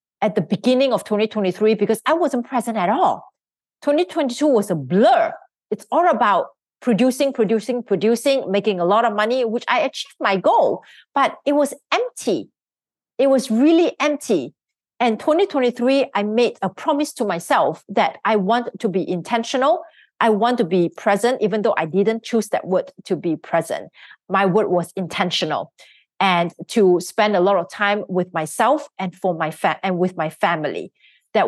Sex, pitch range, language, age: female, 195-275 Hz, English, 40-59